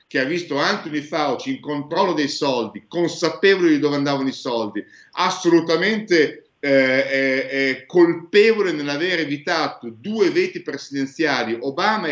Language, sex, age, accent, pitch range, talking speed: Italian, male, 50-69, native, 120-160 Hz, 130 wpm